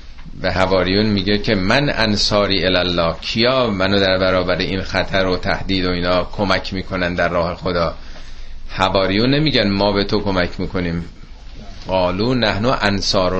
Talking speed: 145 wpm